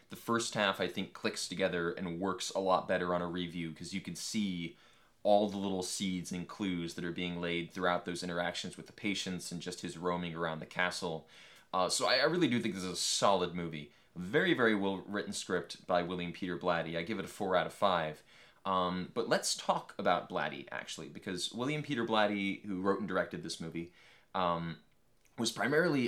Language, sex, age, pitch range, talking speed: English, male, 20-39, 90-105 Hz, 205 wpm